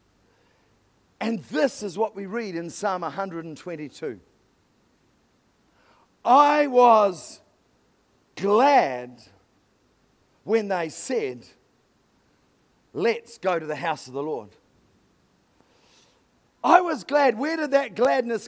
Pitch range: 185-260 Hz